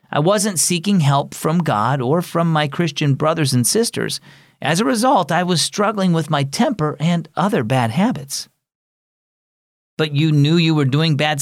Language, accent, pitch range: English, American, 125-175 Hz